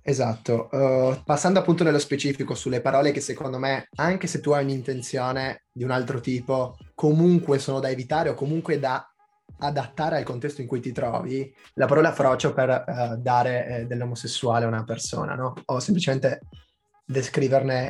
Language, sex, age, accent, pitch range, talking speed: Italian, male, 20-39, native, 130-160 Hz, 165 wpm